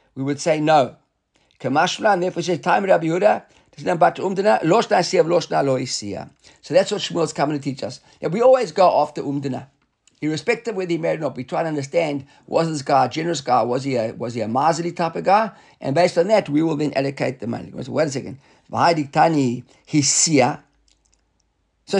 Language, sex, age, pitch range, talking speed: English, male, 50-69, 150-190 Hz, 175 wpm